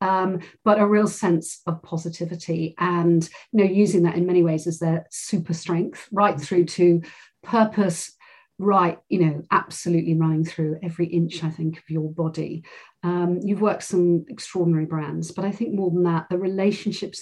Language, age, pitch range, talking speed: English, 40-59, 165-190 Hz, 175 wpm